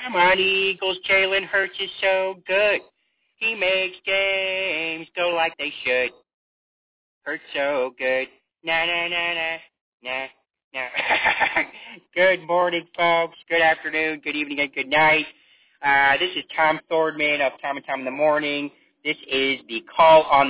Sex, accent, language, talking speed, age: male, American, English, 150 wpm, 30-49